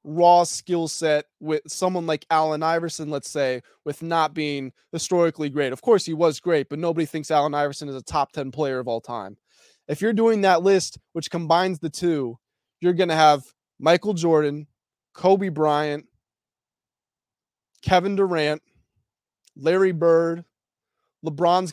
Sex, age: male, 20-39